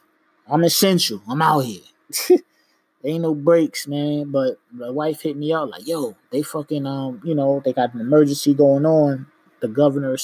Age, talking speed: 20-39, 190 wpm